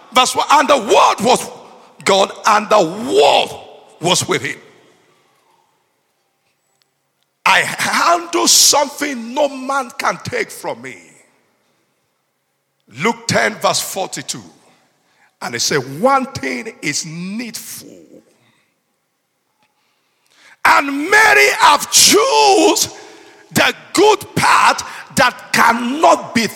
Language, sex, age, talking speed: English, male, 50-69, 95 wpm